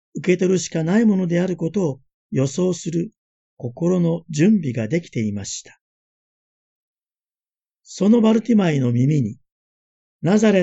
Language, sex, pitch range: Japanese, male, 130-180 Hz